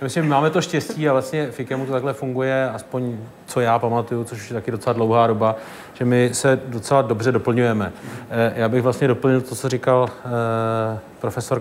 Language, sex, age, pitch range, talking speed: Czech, male, 40-59, 115-135 Hz, 175 wpm